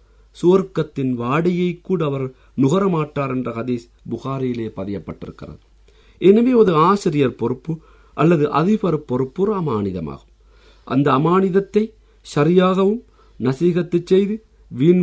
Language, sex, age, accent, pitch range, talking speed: Tamil, male, 50-69, native, 130-195 Hz, 90 wpm